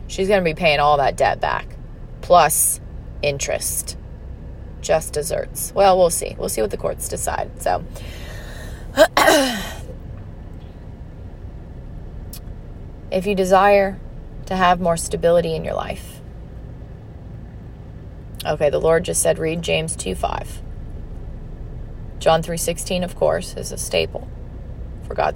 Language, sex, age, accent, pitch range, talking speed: English, female, 30-49, American, 105-180 Hz, 120 wpm